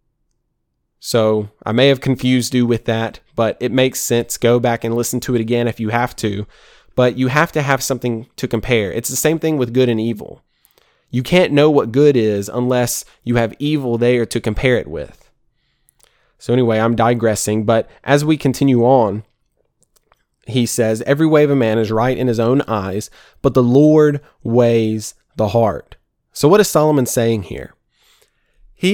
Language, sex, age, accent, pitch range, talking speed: English, male, 20-39, American, 115-145 Hz, 185 wpm